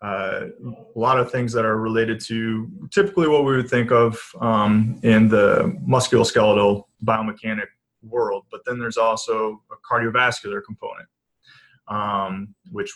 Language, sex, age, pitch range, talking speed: English, male, 20-39, 105-135 Hz, 140 wpm